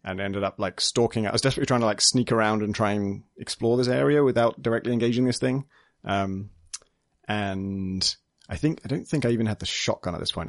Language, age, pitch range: English, 30-49, 95-115 Hz